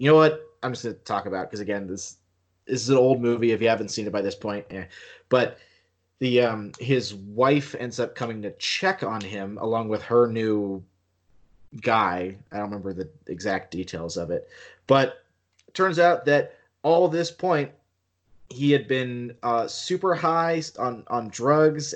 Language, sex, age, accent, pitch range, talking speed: English, male, 30-49, American, 105-130 Hz, 185 wpm